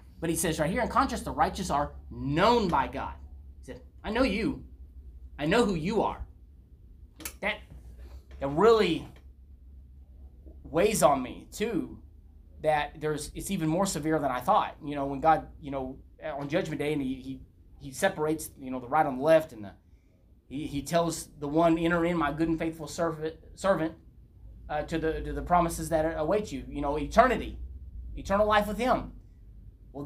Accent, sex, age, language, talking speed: American, male, 30-49, English, 185 wpm